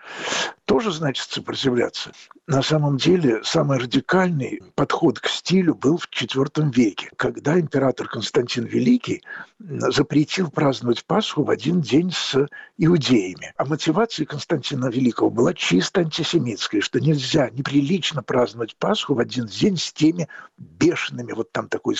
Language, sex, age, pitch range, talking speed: Russian, male, 60-79, 130-180 Hz, 130 wpm